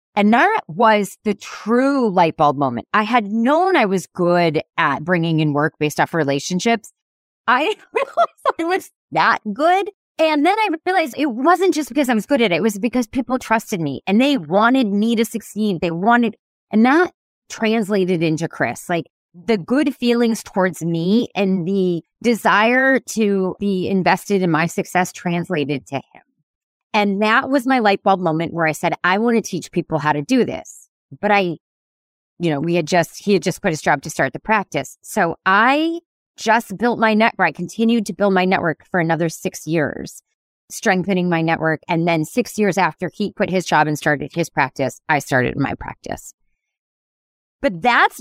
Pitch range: 170-235 Hz